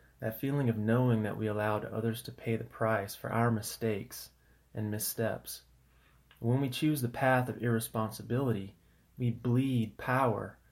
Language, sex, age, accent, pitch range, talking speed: English, male, 30-49, American, 110-125 Hz, 150 wpm